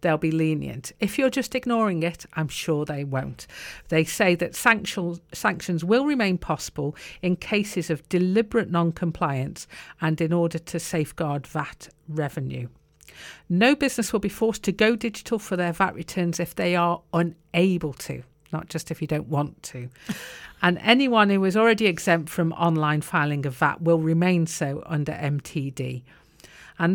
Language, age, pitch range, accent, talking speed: English, 50-69, 155-205 Hz, British, 160 wpm